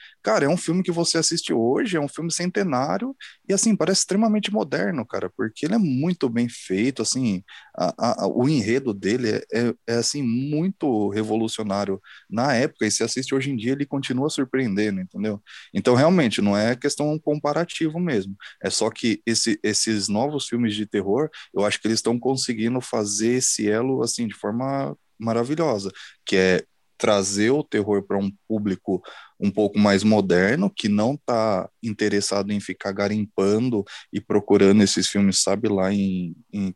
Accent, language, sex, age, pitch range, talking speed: Brazilian, Portuguese, male, 20-39, 100-130 Hz, 165 wpm